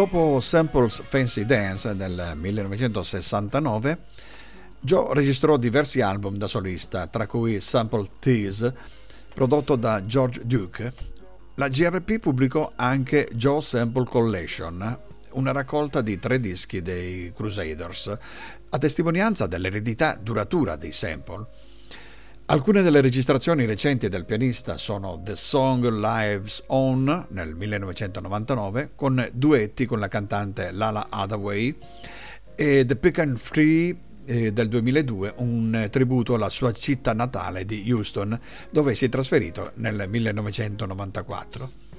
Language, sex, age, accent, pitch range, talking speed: Italian, male, 50-69, native, 105-135 Hz, 115 wpm